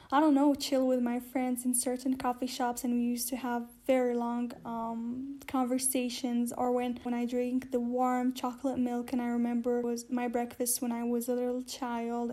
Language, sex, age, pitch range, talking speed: English, female, 10-29, 240-260 Hz, 200 wpm